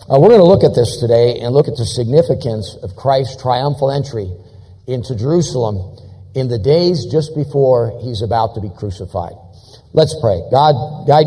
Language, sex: English, male